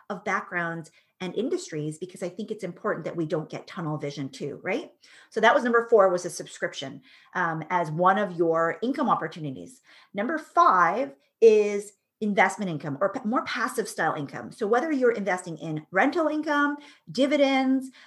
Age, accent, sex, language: 30-49, American, female, English